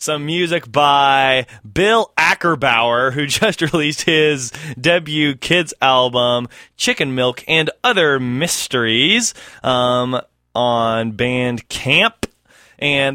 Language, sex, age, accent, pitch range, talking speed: English, male, 20-39, American, 125-175 Hz, 95 wpm